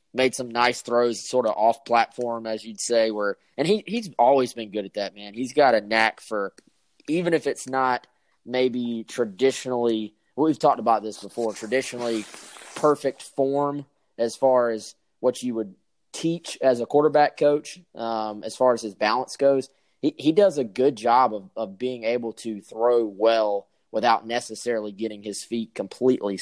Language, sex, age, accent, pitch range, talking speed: English, male, 20-39, American, 110-125 Hz, 175 wpm